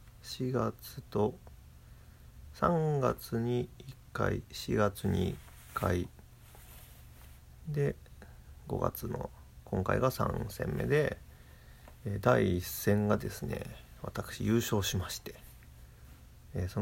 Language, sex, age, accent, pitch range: Japanese, male, 40-59, native, 70-115 Hz